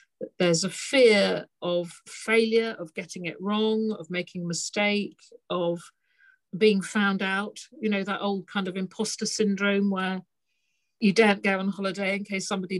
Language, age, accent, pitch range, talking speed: English, 50-69, British, 175-205 Hz, 160 wpm